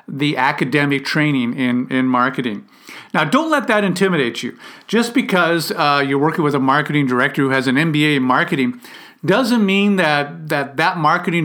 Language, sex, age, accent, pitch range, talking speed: English, male, 50-69, American, 140-185 Hz, 175 wpm